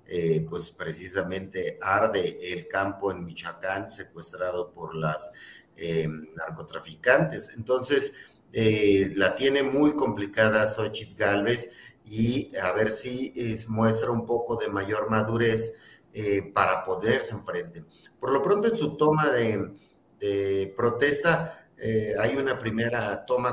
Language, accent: Spanish, Mexican